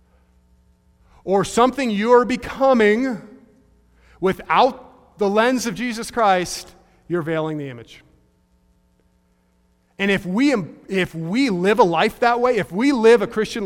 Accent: American